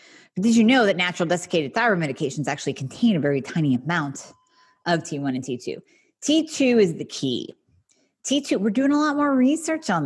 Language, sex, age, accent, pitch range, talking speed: English, female, 30-49, American, 140-230 Hz, 185 wpm